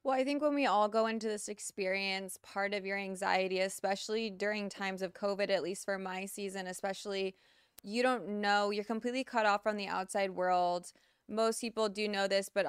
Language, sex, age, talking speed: English, female, 20-39, 200 wpm